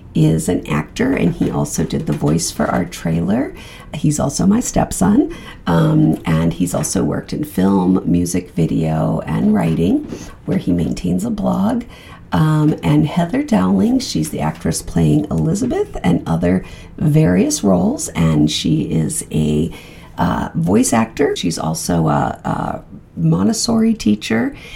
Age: 50-69